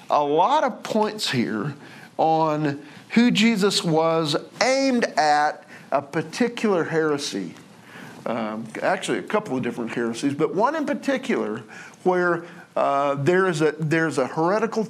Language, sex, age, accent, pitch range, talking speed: English, male, 50-69, American, 145-200 Hz, 135 wpm